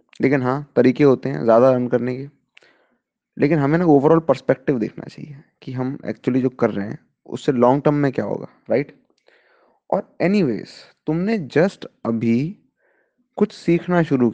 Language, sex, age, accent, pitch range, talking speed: Hindi, male, 20-39, native, 125-205 Hz, 160 wpm